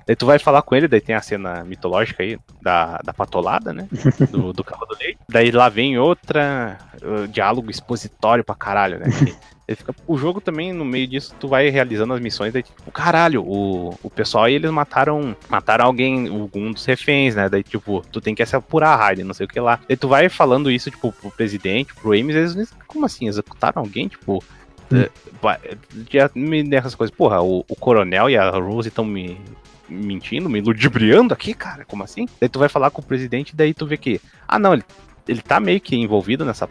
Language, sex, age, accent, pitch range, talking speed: Portuguese, male, 20-39, Brazilian, 105-140 Hz, 205 wpm